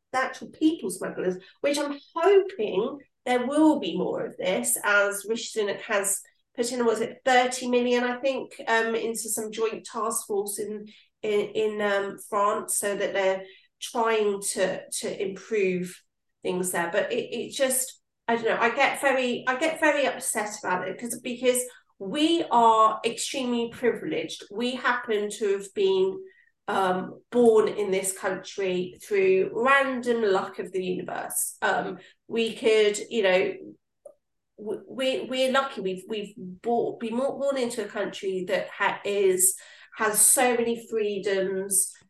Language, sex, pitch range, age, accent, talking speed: English, female, 200-255 Hz, 40-59, British, 150 wpm